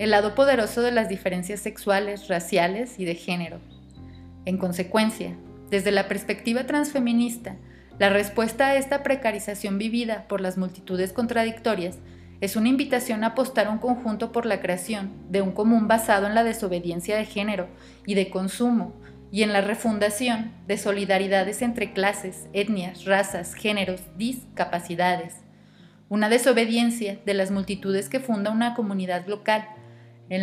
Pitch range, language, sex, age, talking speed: 185-225 Hz, Spanish, female, 30-49, 140 wpm